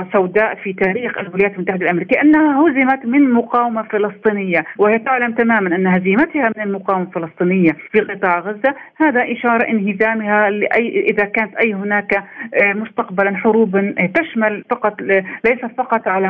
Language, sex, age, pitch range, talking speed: Arabic, female, 40-59, 190-240 Hz, 135 wpm